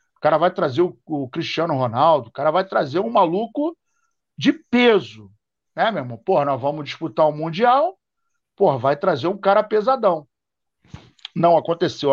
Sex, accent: male, Brazilian